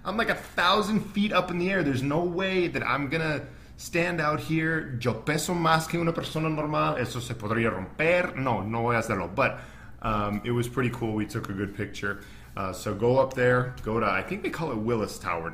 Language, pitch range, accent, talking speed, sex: English, 100-130 Hz, American, 230 wpm, male